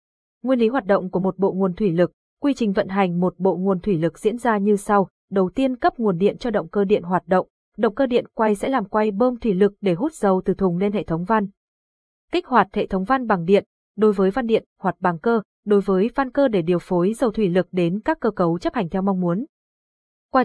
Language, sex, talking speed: Vietnamese, female, 255 wpm